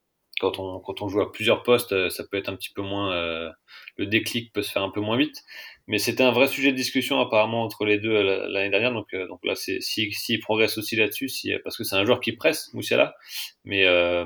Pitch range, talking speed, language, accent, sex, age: 95-120 Hz, 260 wpm, French, French, male, 30-49